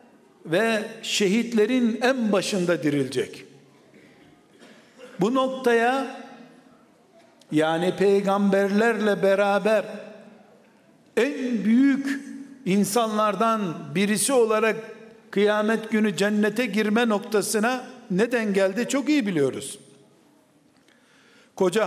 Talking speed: 70 wpm